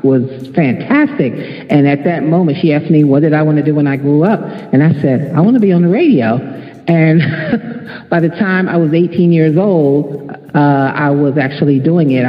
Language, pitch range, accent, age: English, 140-170 Hz, American, 50-69